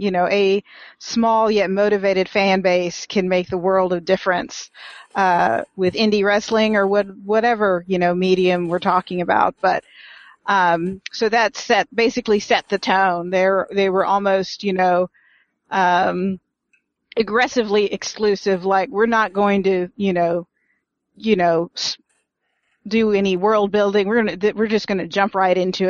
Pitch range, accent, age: 185-210 Hz, American, 40-59